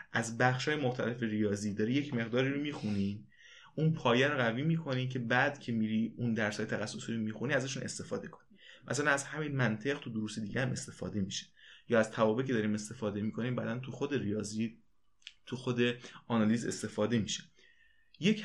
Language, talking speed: Persian, 165 wpm